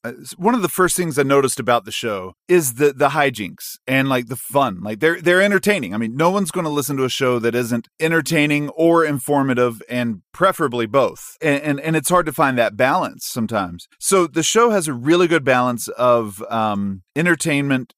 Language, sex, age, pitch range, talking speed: English, male, 30-49, 115-150 Hz, 205 wpm